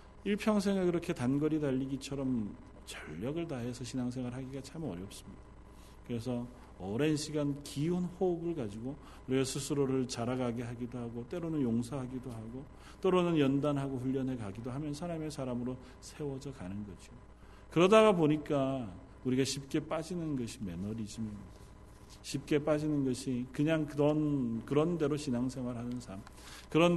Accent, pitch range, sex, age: native, 110-150 Hz, male, 40-59